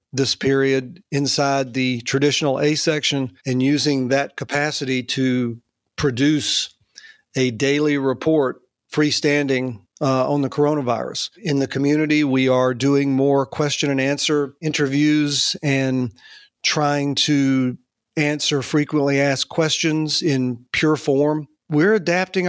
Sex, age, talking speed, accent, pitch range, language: male, 40-59, 115 wpm, American, 135-150 Hz, English